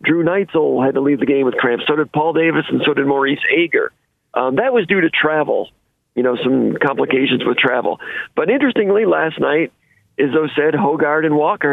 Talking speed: 200 wpm